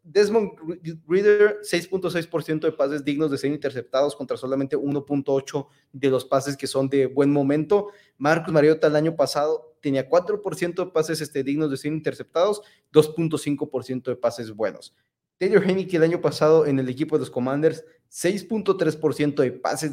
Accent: Mexican